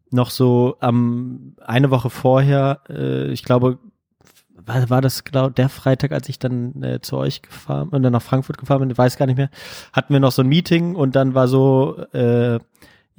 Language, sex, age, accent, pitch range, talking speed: German, male, 20-39, German, 120-145 Hz, 200 wpm